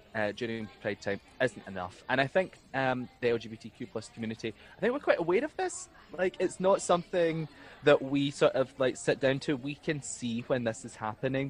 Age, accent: 20-39, British